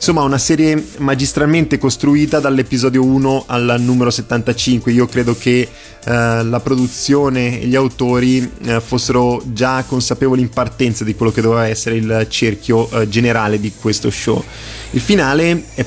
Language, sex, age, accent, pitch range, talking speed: Italian, male, 20-39, native, 115-130 Hz, 150 wpm